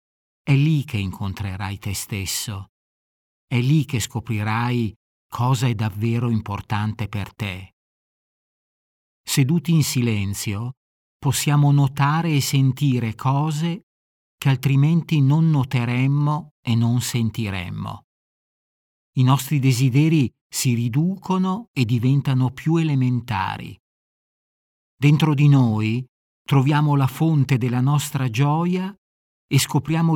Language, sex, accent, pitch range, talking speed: Italian, male, native, 110-145 Hz, 100 wpm